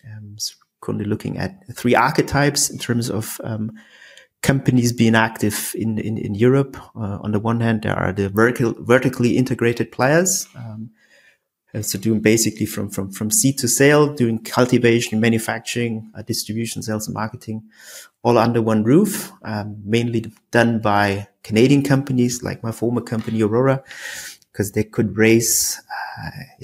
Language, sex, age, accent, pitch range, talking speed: English, male, 30-49, German, 105-125 Hz, 155 wpm